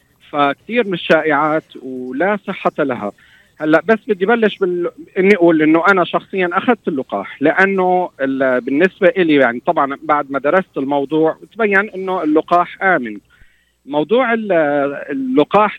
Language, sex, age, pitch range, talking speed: Arabic, male, 40-59, 145-195 Hz, 120 wpm